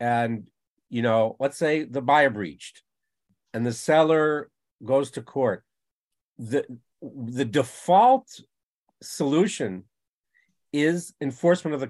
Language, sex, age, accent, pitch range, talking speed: English, male, 50-69, American, 125-170 Hz, 110 wpm